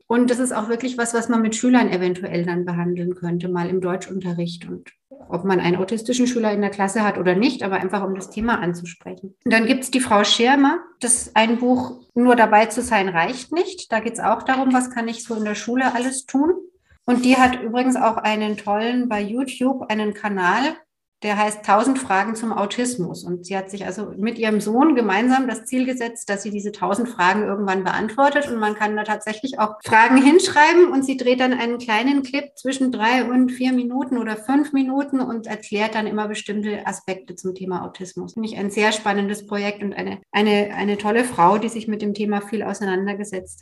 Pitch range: 205-250 Hz